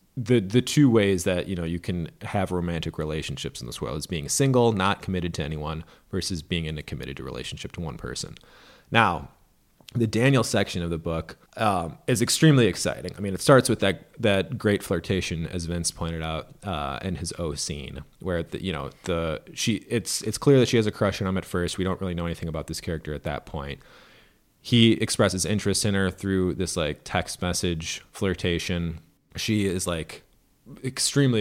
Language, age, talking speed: English, 30-49, 200 wpm